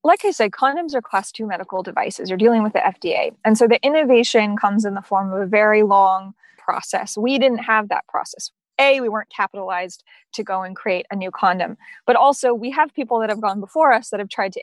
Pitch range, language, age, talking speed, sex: 190-235 Hz, English, 20-39, 235 wpm, female